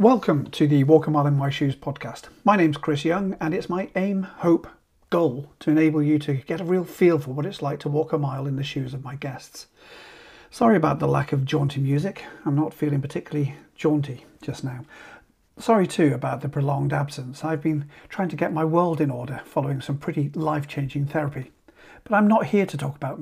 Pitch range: 145-170 Hz